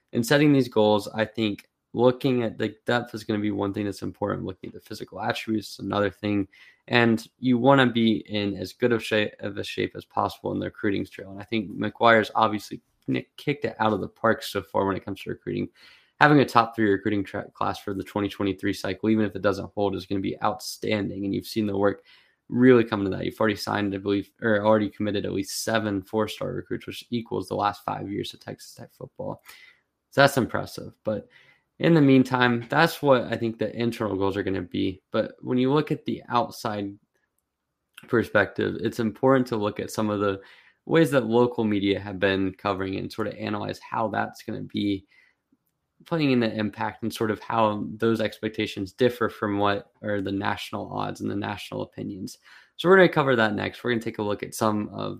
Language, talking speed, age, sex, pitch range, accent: English, 220 wpm, 20-39, male, 100-120 Hz, American